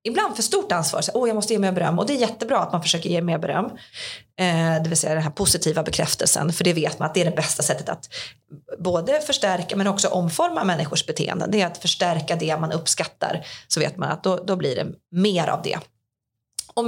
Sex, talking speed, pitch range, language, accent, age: female, 230 wpm, 165-225 Hz, Swedish, native, 30-49